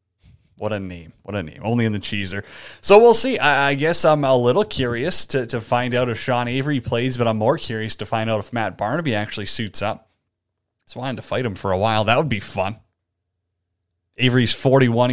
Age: 30-49